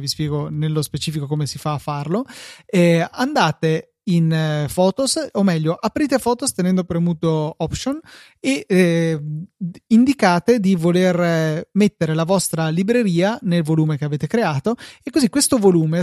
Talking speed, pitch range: 150 wpm, 160-210 Hz